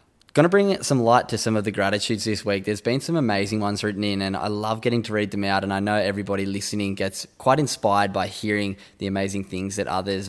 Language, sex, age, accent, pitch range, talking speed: English, male, 10-29, Australian, 100-115 Hz, 245 wpm